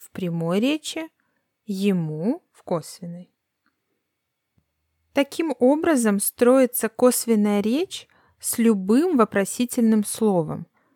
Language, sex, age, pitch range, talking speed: Russian, female, 20-39, 190-260 Hz, 75 wpm